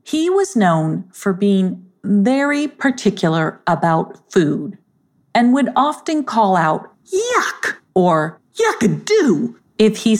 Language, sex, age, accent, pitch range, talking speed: English, female, 50-69, American, 175-255 Hz, 110 wpm